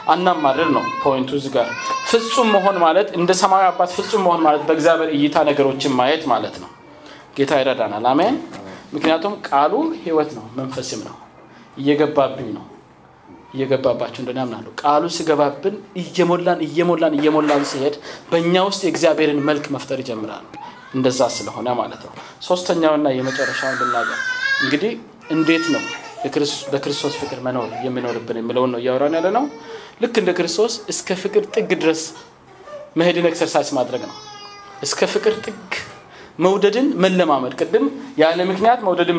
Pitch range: 140-190 Hz